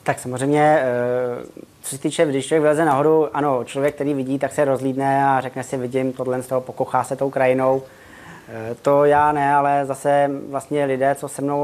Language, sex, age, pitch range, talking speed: Czech, male, 20-39, 130-140 Hz, 190 wpm